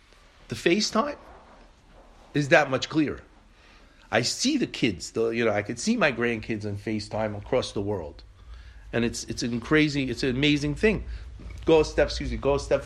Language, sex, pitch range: English, male, 105-145 Hz